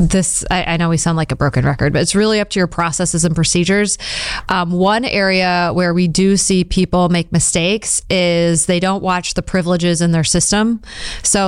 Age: 30-49